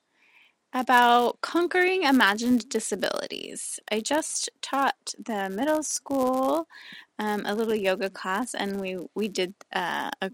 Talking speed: 115 wpm